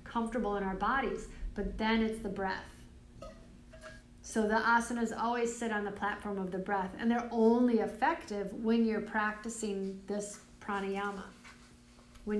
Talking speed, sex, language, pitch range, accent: 145 wpm, female, English, 200-230 Hz, American